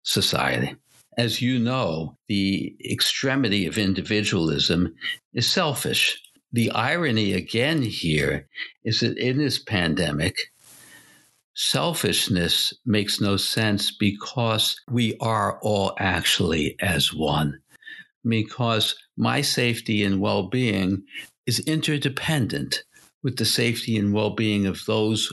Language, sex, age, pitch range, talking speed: English, male, 60-79, 100-125 Hz, 105 wpm